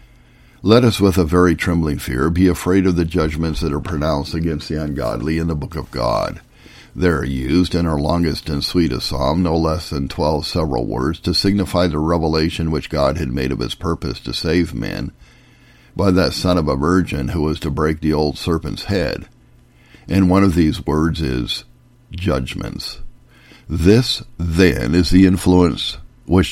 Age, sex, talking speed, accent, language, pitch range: 50-69, male, 180 wpm, American, English, 75-90 Hz